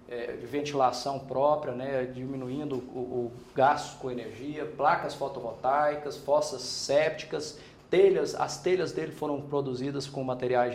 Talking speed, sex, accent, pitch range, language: 115 wpm, male, Brazilian, 130-175 Hz, Portuguese